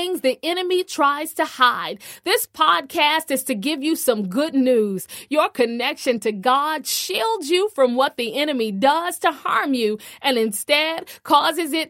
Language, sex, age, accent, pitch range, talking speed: English, female, 40-59, American, 250-330 Hz, 160 wpm